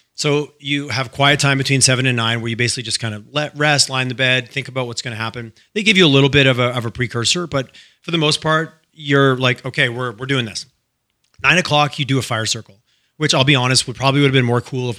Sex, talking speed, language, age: male, 270 wpm, English, 30-49